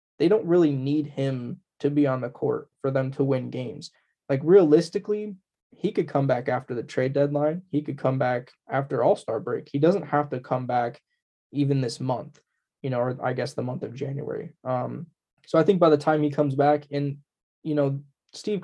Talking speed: 205 wpm